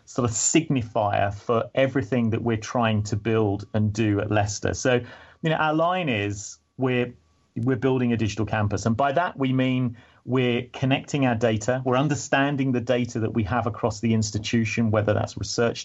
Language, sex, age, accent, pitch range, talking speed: English, male, 40-59, British, 105-120 Hz, 180 wpm